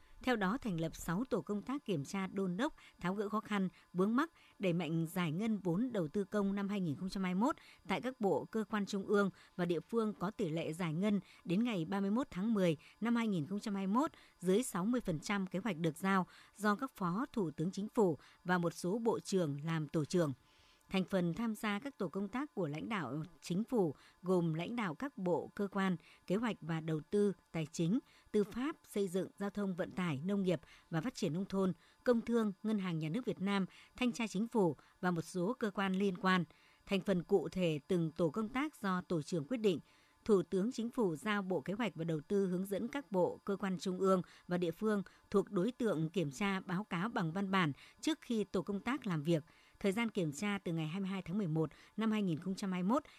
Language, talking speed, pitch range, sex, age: Vietnamese, 220 wpm, 175-215 Hz, male, 60-79